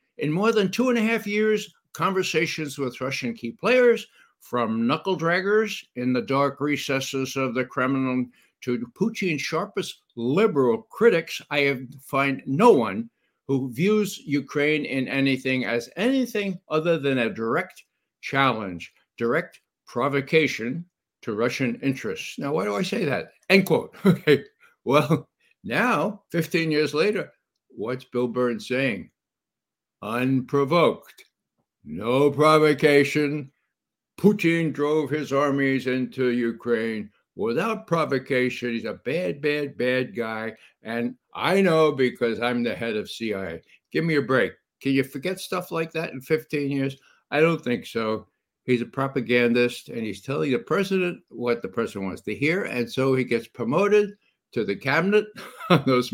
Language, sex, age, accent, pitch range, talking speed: English, male, 60-79, American, 125-170 Hz, 145 wpm